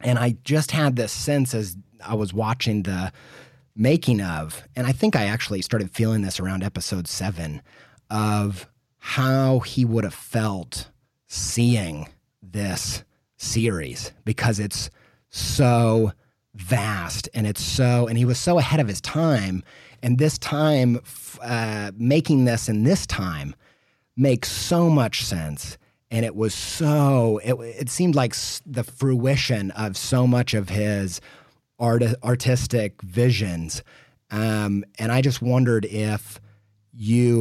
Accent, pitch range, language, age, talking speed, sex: American, 105-130 Hz, English, 30-49, 140 wpm, male